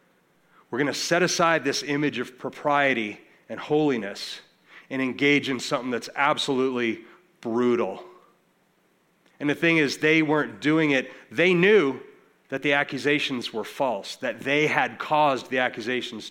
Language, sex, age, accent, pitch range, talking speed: English, male, 40-59, American, 125-155 Hz, 145 wpm